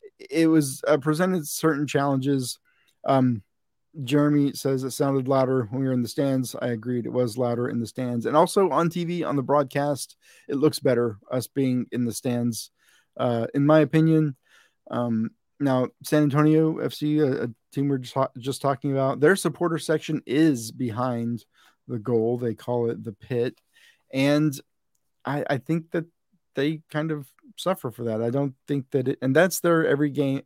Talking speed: 180 wpm